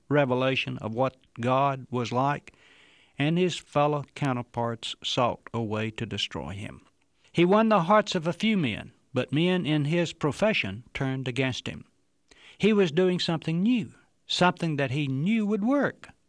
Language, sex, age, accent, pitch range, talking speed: English, male, 60-79, American, 115-180 Hz, 160 wpm